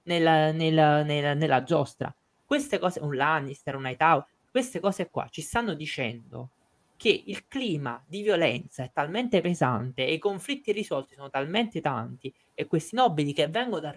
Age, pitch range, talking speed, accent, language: 20-39, 140-205 Hz, 165 wpm, native, Italian